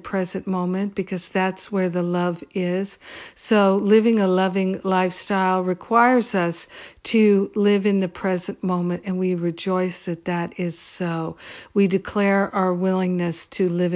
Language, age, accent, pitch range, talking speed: English, 50-69, American, 175-195 Hz, 145 wpm